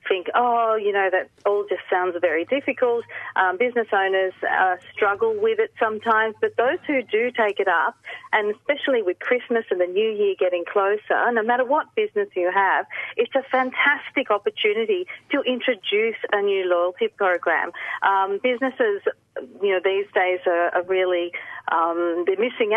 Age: 40-59